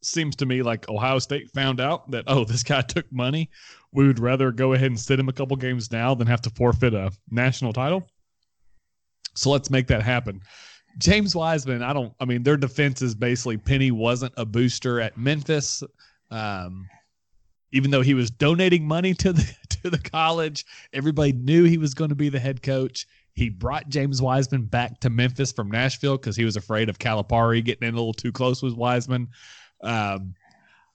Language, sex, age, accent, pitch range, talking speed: English, male, 30-49, American, 110-140 Hz, 190 wpm